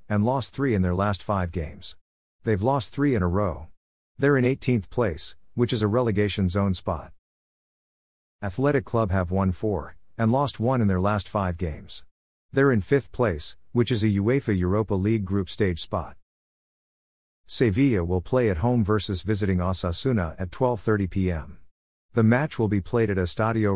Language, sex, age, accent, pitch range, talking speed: English, male, 50-69, American, 90-115 Hz, 170 wpm